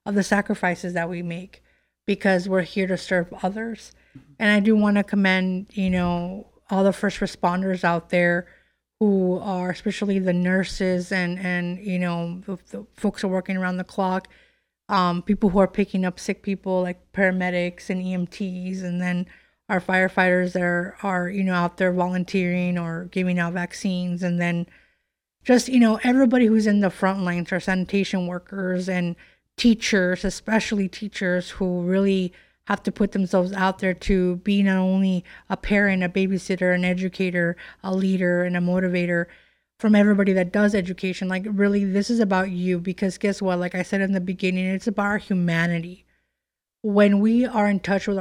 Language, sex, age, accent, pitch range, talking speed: English, female, 30-49, American, 180-200 Hz, 175 wpm